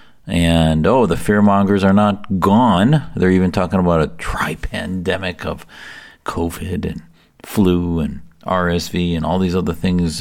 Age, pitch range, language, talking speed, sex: 50-69, 80-95 Hz, English, 140 wpm, male